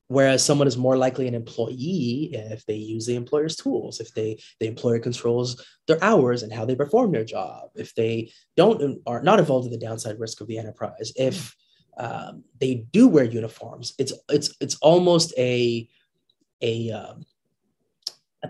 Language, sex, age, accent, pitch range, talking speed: English, male, 20-39, American, 115-150 Hz, 170 wpm